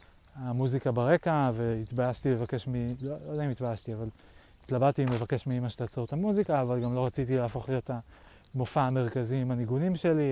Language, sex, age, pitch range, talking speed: Hebrew, male, 30-49, 110-130 Hz, 175 wpm